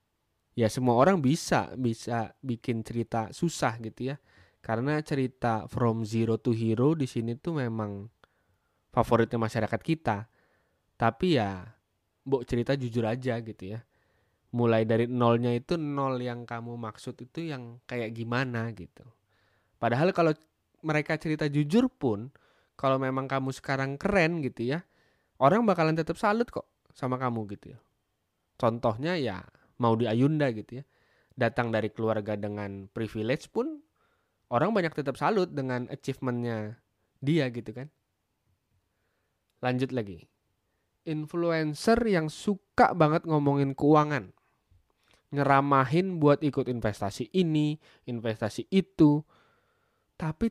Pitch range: 115-150 Hz